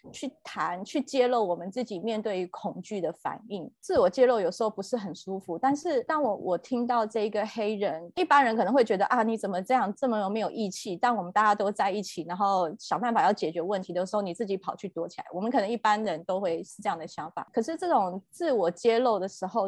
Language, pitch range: Chinese, 185-245 Hz